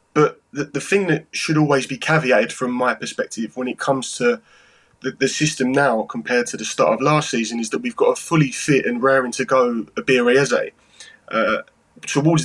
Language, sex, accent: English, male, British